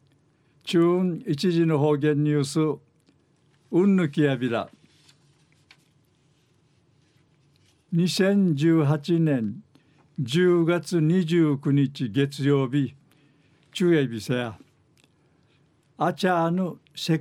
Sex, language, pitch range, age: male, Japanese, 145-170 Hz, 60-79